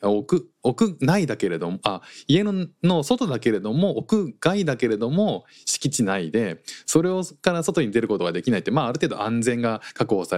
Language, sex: Japanese, male